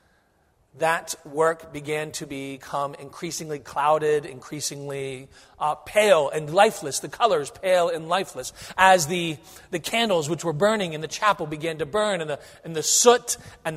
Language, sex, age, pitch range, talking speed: English, male, 40-59, 150-190 Hz, 155 wpm